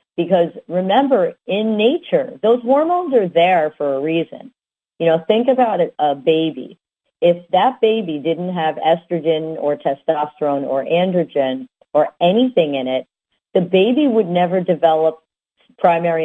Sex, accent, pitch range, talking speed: female, American, 140-185 Hz, 140 wpm